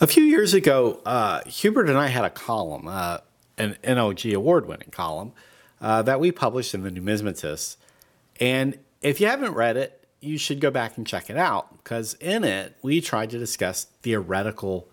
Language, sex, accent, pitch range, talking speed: English, male, American, 100-145 Hz, 180 wpm